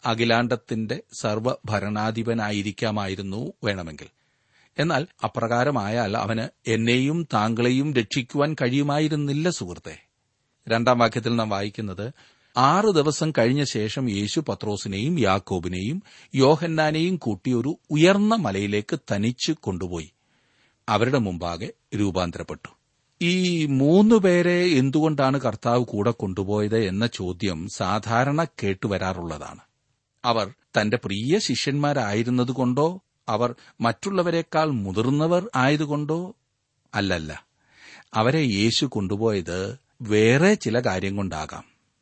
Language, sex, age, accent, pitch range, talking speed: Malayalam, male, 40-59, native, 105-140 Hz, 85 wpm